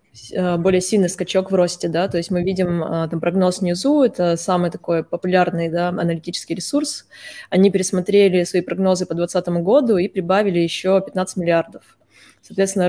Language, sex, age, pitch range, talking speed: Russian, female, 20-39, 175-200 Hz, 145 wpm